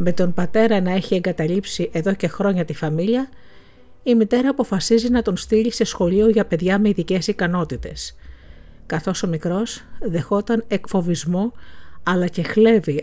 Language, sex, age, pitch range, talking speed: Greek, female, 50-69, 155-205 Hz, 145 wpm